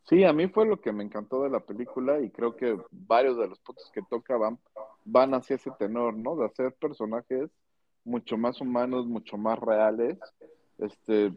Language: Spanish